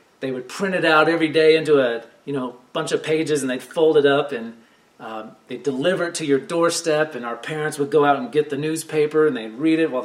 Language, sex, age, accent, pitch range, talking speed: English, male, 40-59, American, 125-155 Hz, 250 wpm